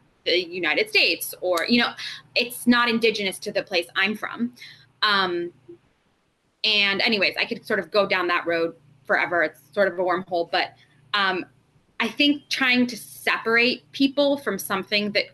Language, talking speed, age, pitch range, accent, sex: English, 165 wpm, 20-39, 185-270 Hz, American, female